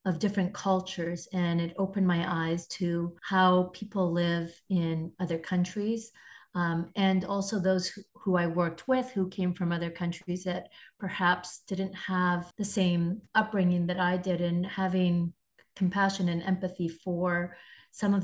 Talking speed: 155 wpm